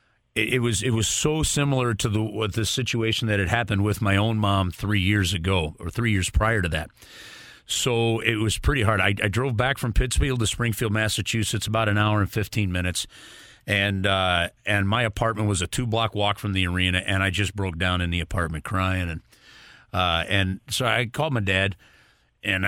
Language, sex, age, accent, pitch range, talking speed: English, male, 40-59, American, 100-120 Hz, 205 wpm